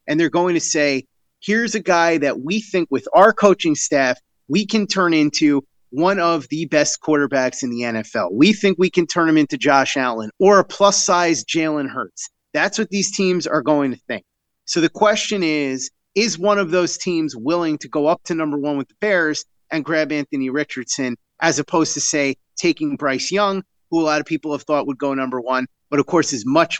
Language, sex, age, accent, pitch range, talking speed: English, male, 30-49, American, 145-185 Hz, 215 wpm